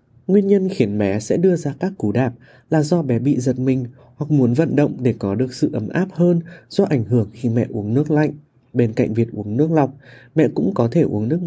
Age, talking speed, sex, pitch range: 20-39, 245 wpm, male, 120-155 Hz